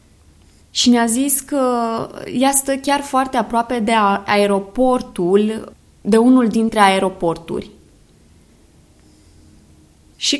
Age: 20-39